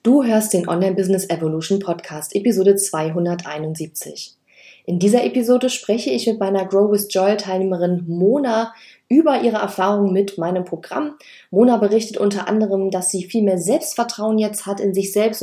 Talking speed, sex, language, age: 145 wpm, female, German, 30-49